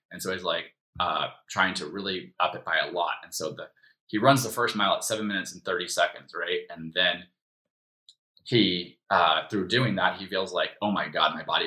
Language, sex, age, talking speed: English, male, 20-39, 220 wpm